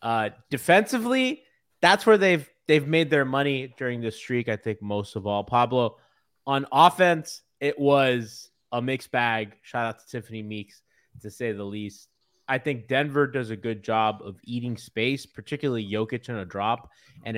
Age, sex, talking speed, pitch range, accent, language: 20-39, male, 170 wpm, 110-135 Hz, American, English